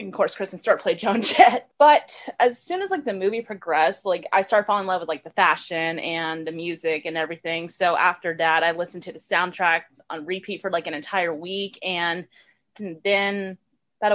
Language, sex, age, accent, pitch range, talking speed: English, female, 20-39, American, 180-230 Hz, 205 wpm